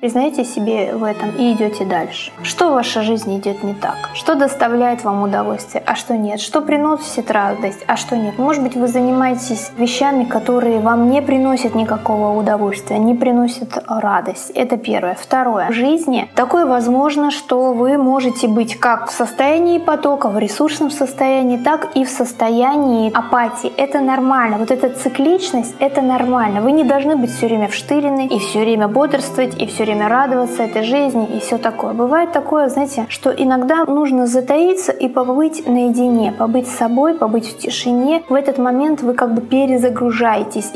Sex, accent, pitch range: female, native, 230-275 Hz